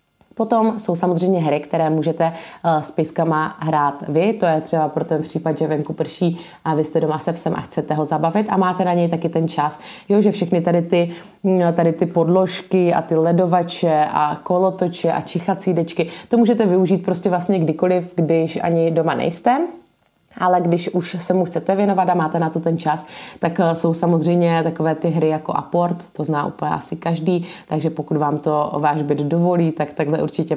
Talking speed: 190 wpm